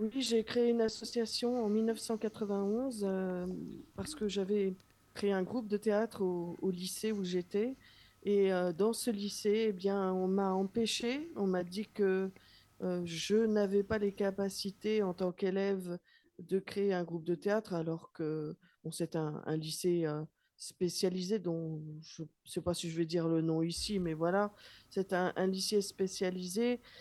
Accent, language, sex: French, French, female